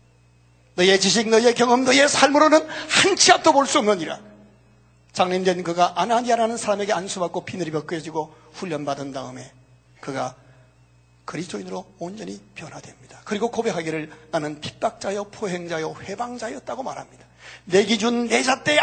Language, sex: Korean, male